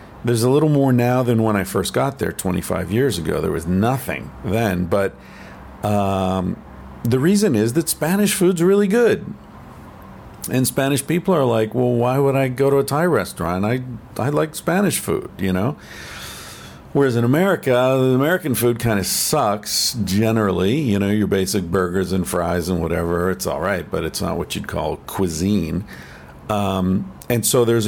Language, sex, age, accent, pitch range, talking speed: English, male, 50-69, American, 90-125 Hz, 175 wpm